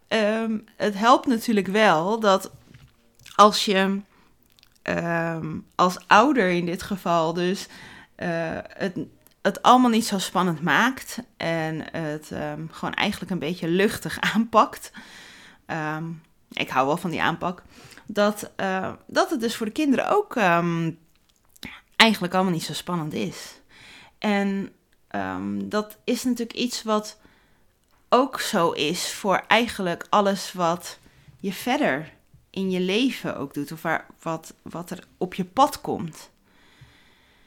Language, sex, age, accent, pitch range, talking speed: Dutch, female, 30-49, Dutch, 165-215 Hz, 125 wpm